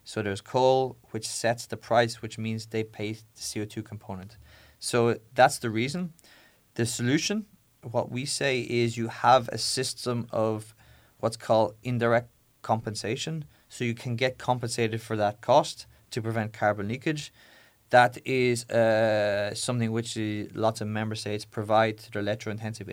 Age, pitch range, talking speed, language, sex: 20-39, 105-120 Hz, 150 wpm, Slovak, male